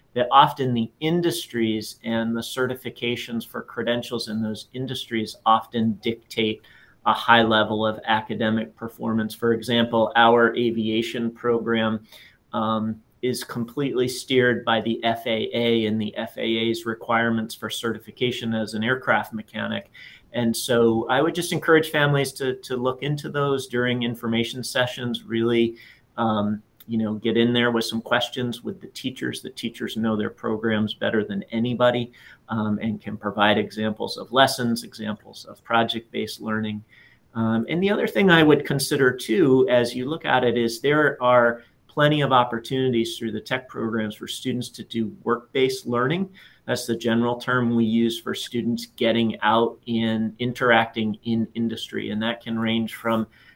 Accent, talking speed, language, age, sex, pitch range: American, 155 wpm, English, 30-49, male, 110-125 Hz